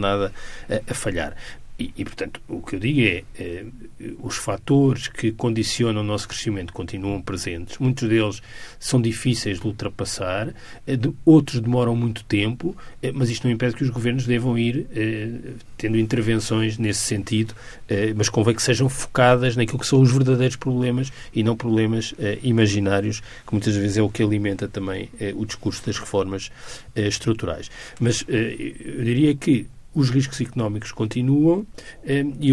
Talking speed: 170 wpm